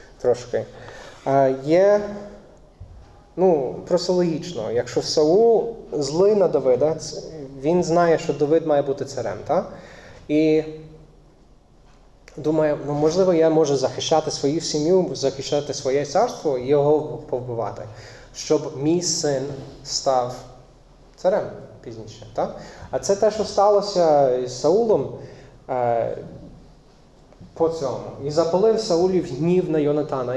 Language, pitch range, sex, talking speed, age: Ukrainian, 130-170 Hz, male, 105 wpm, 20-39